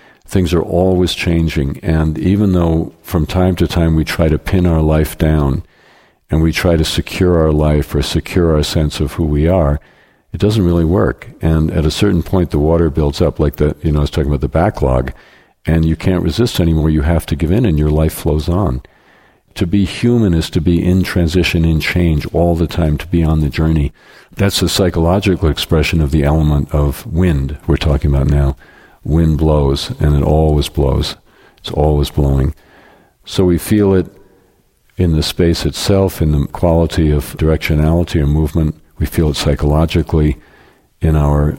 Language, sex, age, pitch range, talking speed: English, male, 50-69, 75-90 Hz, 190 wpm